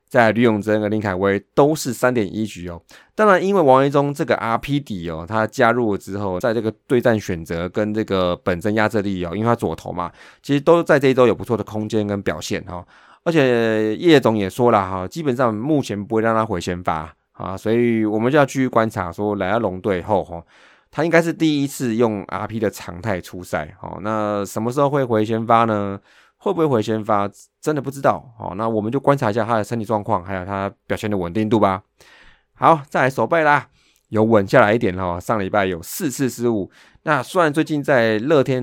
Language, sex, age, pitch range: Chinese, male, 20-39, 100-125 Hz